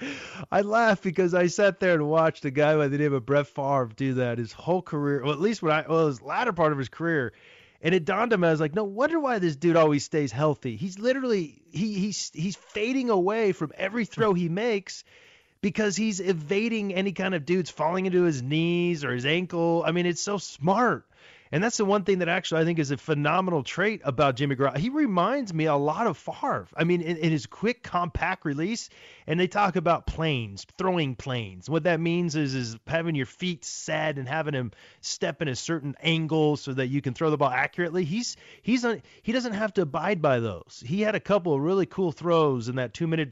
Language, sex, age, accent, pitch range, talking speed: English, male, 30-49, American, 140-190 Hz, 225 wpm